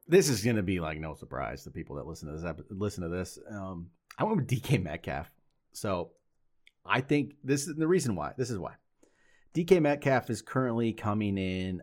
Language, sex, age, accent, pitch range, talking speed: English, male, 30-49, American, 90-115 Hz, 210 wpm